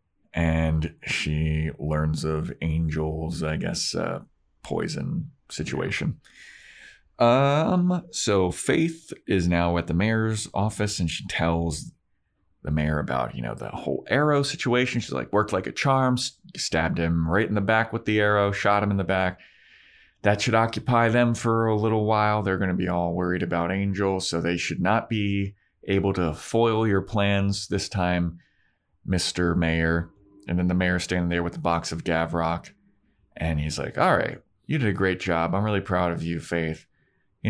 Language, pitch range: English, 85-115 Hz